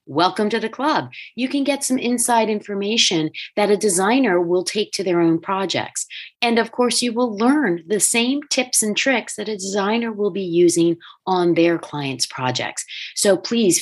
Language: English